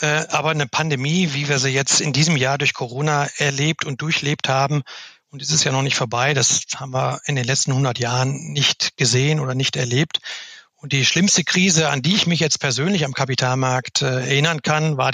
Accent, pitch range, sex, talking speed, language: German, 140-165 Hz, male, 200 wpm, German